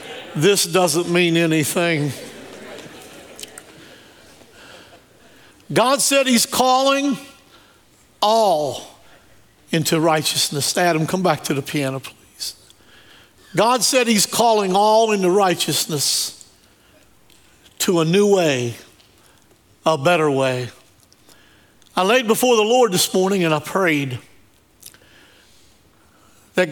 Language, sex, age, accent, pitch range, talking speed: English, male, 60-79, American, 125-195 Hz, 95 wpm